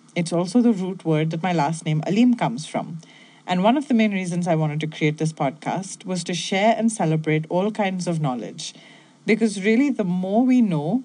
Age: 30-49